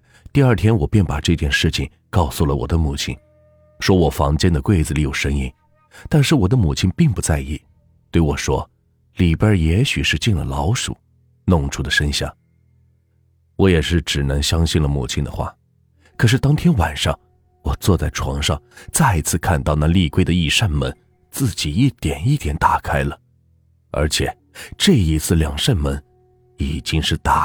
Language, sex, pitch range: Chinese, male, 75-110 Hz